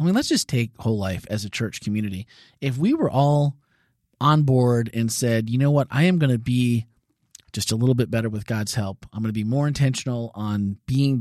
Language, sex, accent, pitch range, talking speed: English, male, American, 115-140 Hz, 230 wpm